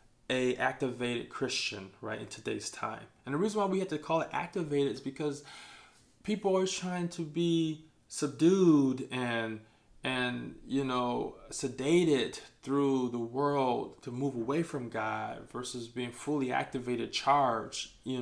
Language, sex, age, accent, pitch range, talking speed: English, male, 20-39, American, 115-150 Hz, 145 wpm